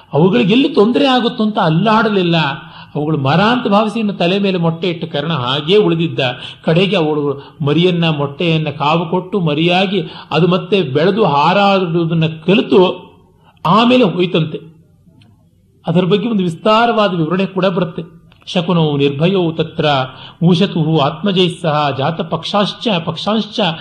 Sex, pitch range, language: male, 150-195 Hz, Kannada